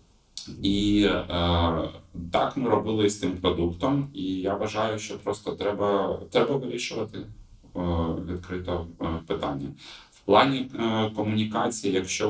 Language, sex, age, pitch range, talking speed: Ukrainian, male, 30-49, 80-100 Hz, 115 wpm